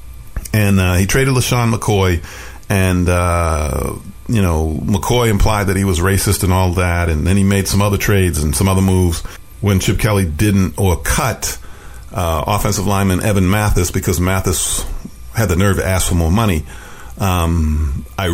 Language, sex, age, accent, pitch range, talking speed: English, male, 50-69, American, 90-115 Hz, 175 wpm